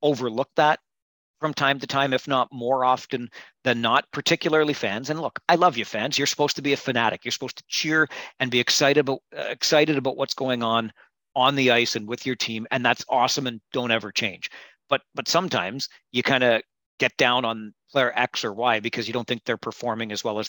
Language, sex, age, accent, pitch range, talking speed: English, male, 40-59, American, 115-140 Hz, 225 wpm